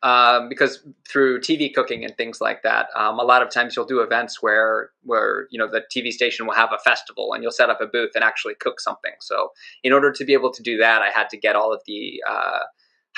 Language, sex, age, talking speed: English, male, 20-39, 250 wpm